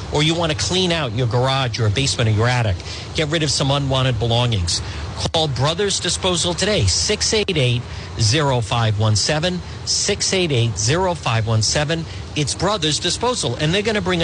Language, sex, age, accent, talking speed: English, male, 50-69, American, 140 wpm